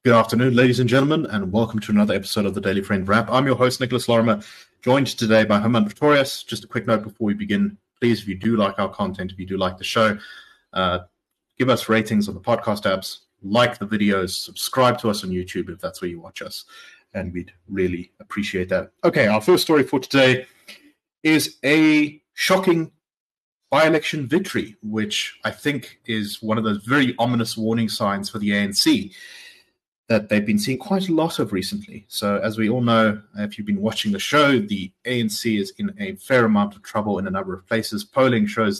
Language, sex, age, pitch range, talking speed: English, male, 30-49, 100-130 Hz, 205 wpm